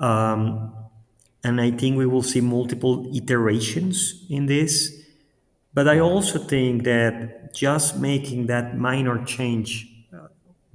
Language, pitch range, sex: English, 115-145 Hz, male